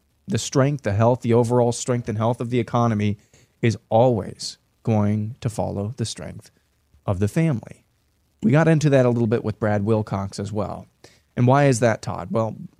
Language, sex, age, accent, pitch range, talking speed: English, male, 30-49, American, 105-120 Hz, 190 wpm